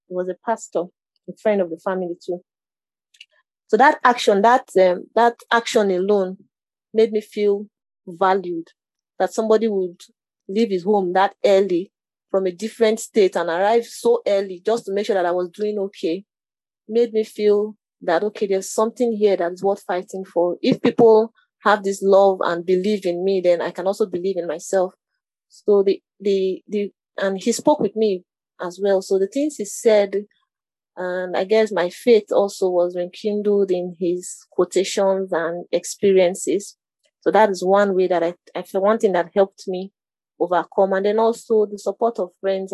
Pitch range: 180-220 Hz